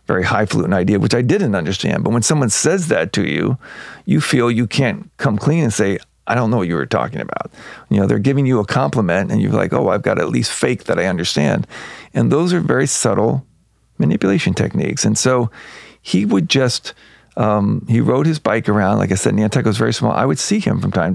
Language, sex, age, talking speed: English, male, 50-69, 225 wpm